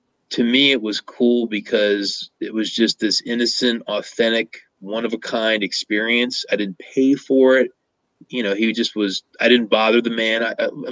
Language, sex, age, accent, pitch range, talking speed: English, male, 30-49, American, 105-130 Hz, 185 wpm